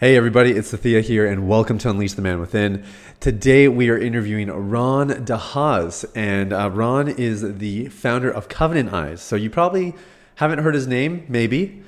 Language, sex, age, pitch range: English, male, 30-49, 105-130 Hz